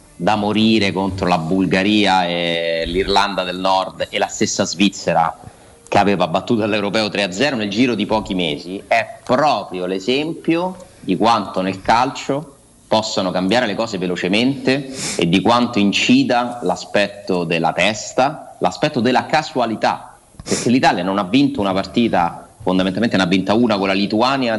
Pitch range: 90-120 Hz